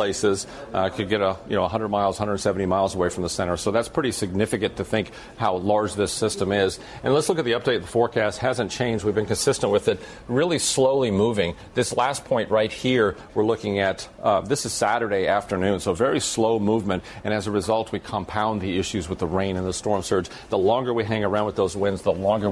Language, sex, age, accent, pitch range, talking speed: English, male, 40-59, American, 95-110 Hz, 230 wpm